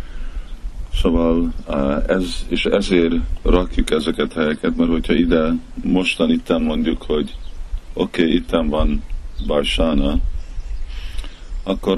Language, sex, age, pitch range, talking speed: Hungarian, male, 50-69, 70-85 Hz, 100 wpm